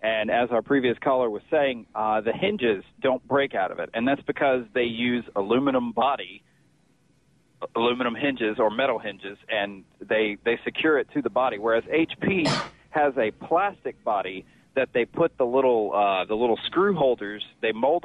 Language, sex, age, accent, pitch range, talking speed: English, male, 40-59, American, 120-150 Hz, 175 wpm